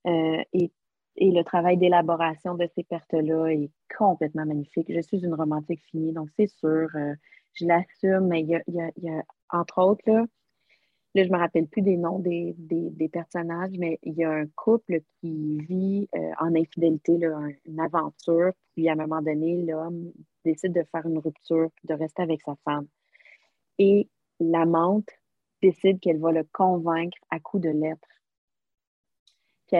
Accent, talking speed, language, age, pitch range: Canadian, 180 wpm, French, 30-49, 160-185 Hz